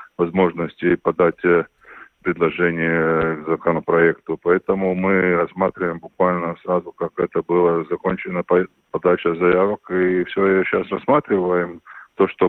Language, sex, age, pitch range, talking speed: Russian, male, 20-39, 85-95 Hz, 105 wpm